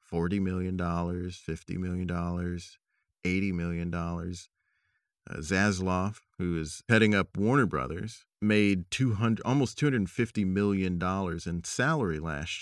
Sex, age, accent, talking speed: male, 40-59, American, 95 wpm